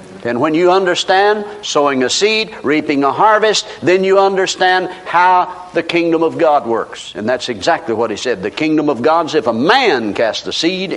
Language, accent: English, American